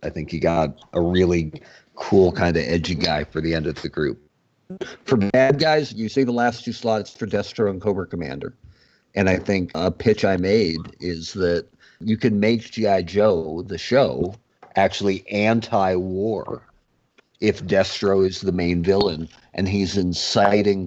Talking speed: 165 wpm